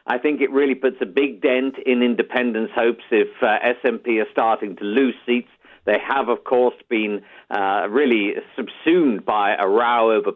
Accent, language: British, English